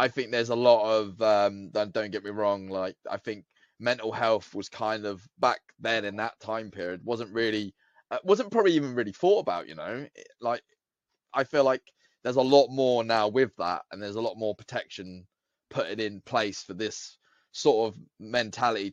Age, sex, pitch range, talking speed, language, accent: 20-39, male, 100-120 Hz, 195 wpm, English, British